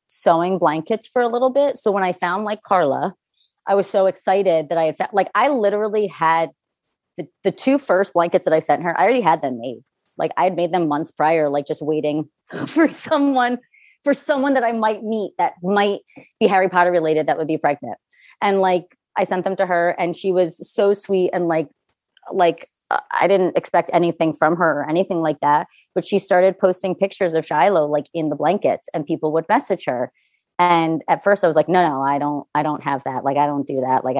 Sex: female